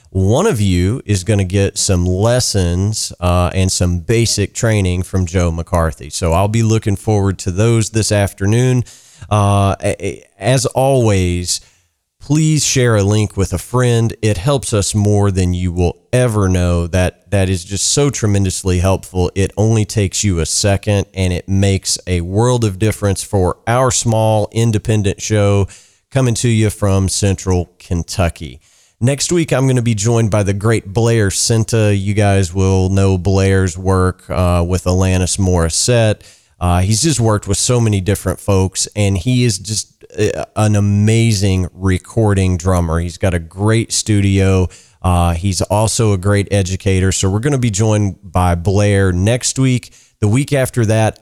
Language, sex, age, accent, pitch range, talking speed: English, male, 40-59, American, 90-110 Hz, 165 wpm